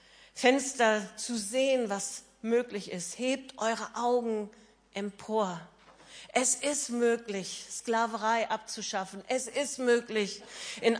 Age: 50-69